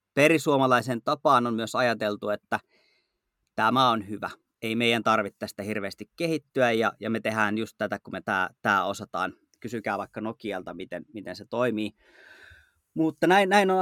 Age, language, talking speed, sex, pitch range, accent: 30-49, Finnish, 155 wpm, male, 110-130 Hz, native